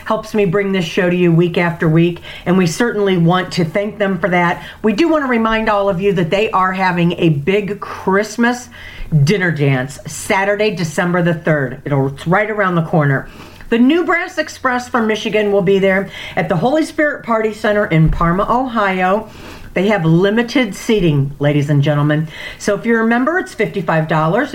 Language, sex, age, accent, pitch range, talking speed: English, female, 50-69, American, 155-220 Hz, 190 wpm